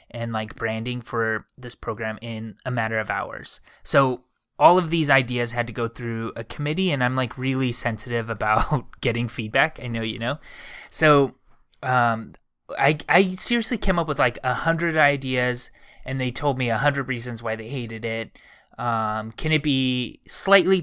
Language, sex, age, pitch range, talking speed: English, male, 20-39, 120-150 Hz, 180 wpm